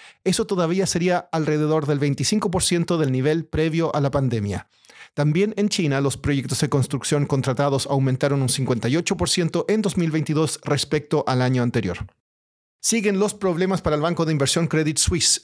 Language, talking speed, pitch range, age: Spanish, 150 wpm, 140-180 Hz, 40-59